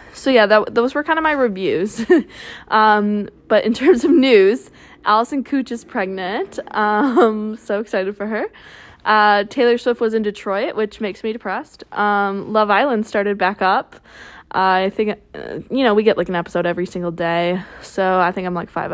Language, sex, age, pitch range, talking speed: English, female, 20-39, 190-225 Hz, 185 wpm